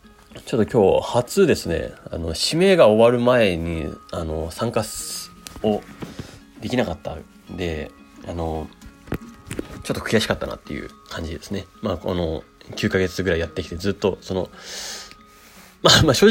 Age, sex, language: 30-49, male, Japanese